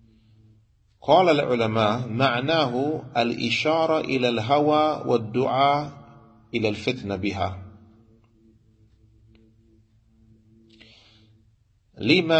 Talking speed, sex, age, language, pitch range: 55 wpm, male, 40-59, English, 110-140 Hz